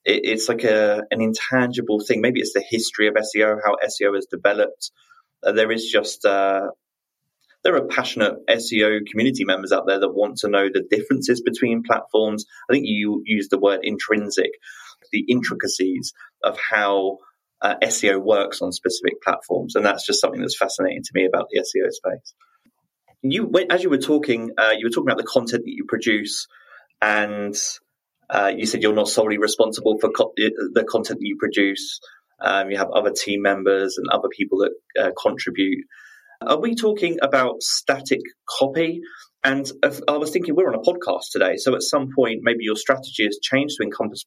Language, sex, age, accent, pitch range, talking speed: English, male, 20-39, British, 105-165 Hz, 180 wpm